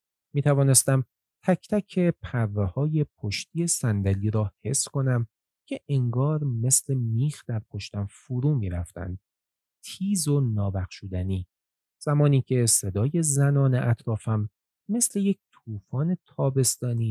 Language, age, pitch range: Persian, 40-59, 100-140 Hz